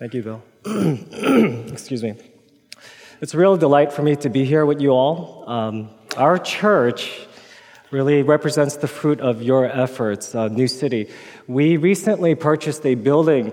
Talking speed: 155 wpm